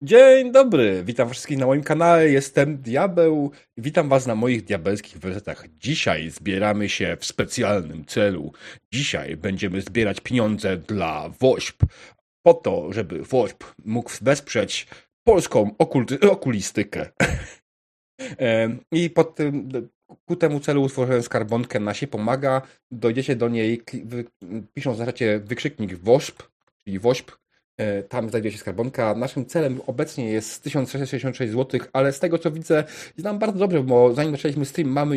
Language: Polish